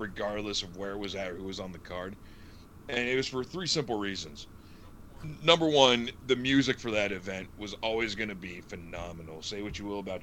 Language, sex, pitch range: English, male, 90-110 Hz